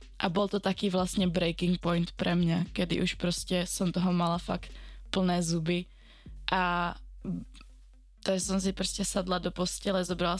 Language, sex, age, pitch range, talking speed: Slovak, female, 20-39, 175-190 Hz, 155 wpm